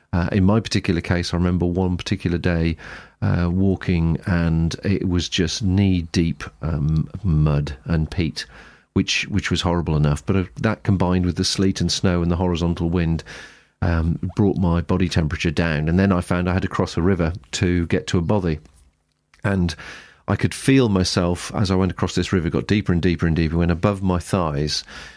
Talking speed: 195 wpm